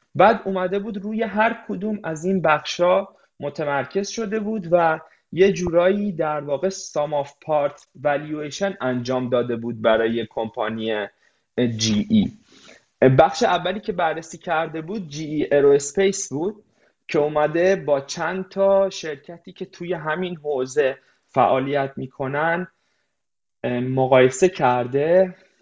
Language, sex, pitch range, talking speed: Persian, male, 130-185 Hz, 115 wpm